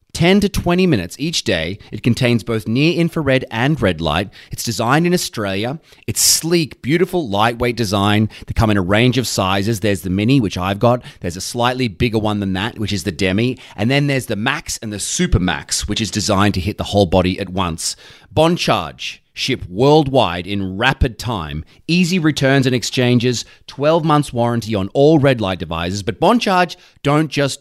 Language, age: English, 30-49